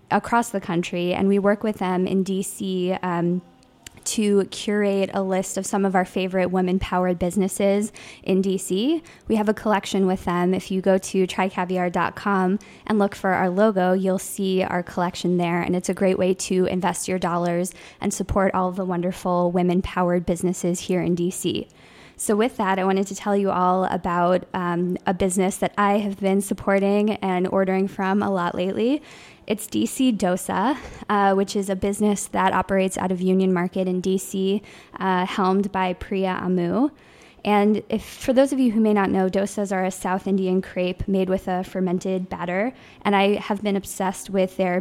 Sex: female